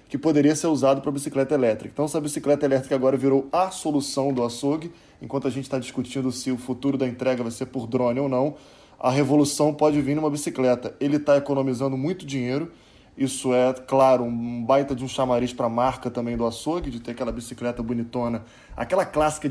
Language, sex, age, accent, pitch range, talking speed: Portuguese, male, 20-39, Brazilian, 125-150 Hz, 200 wpm